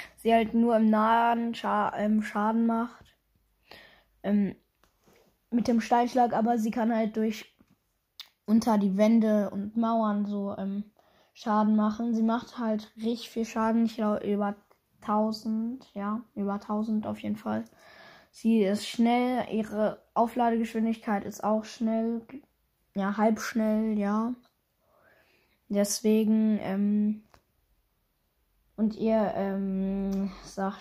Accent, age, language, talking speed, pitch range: German, 10-29, German, 115 wpm, 195-225 Hz